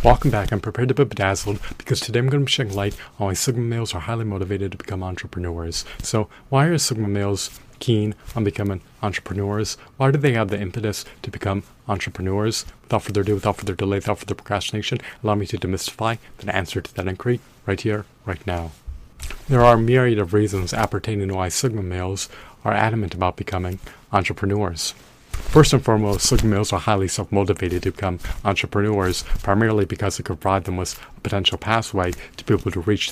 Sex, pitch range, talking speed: male, 95-110 Hz, 190 wpm